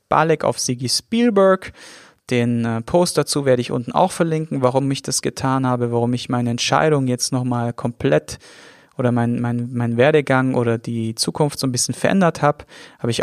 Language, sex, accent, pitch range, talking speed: German, male, German, 125-155 Hz, 170 wpm